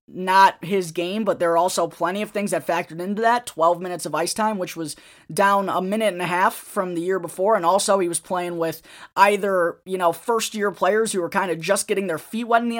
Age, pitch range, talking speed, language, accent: 20-39, 175-220 Hz, 255 wpm, English, American